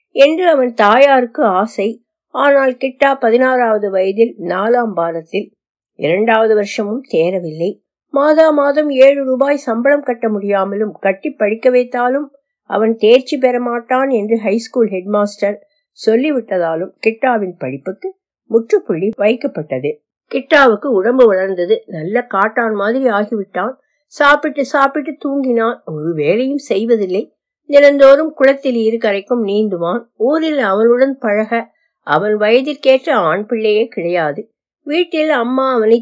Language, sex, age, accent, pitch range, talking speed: Tamil, female, 50-69, native, 200-275 Hz, 90 wpm